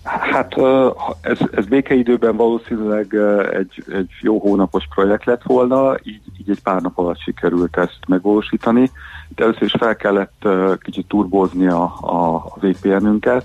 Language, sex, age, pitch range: Hungarian, male, 50-69, 85-105 Hz